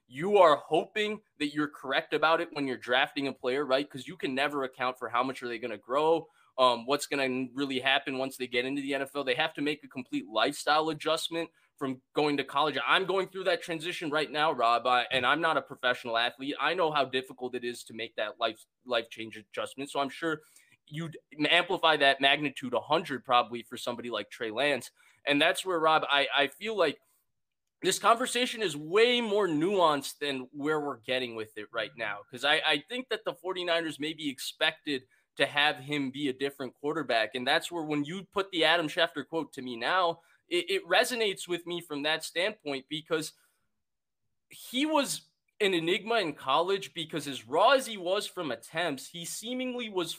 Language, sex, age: English, male, 20-39